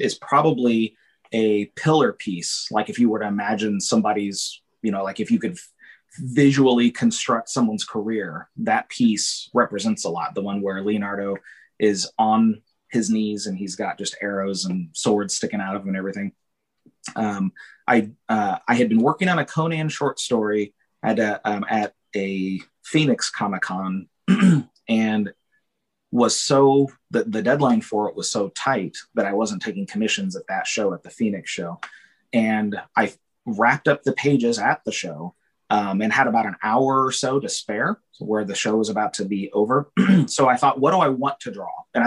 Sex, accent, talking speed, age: male, American, 185 wpm, 30-49